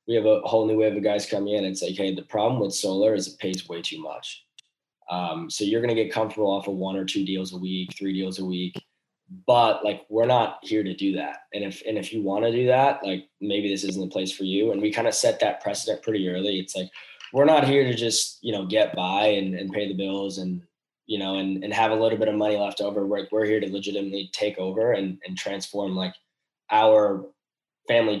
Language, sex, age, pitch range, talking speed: English, male, 10-29, 95-110 Hz, 250 wpm